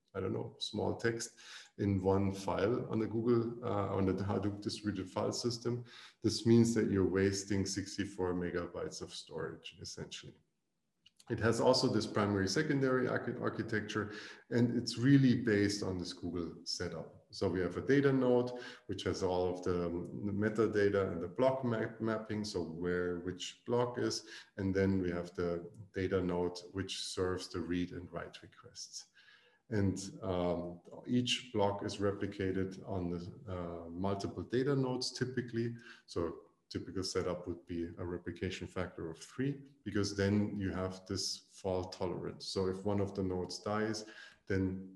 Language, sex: English, male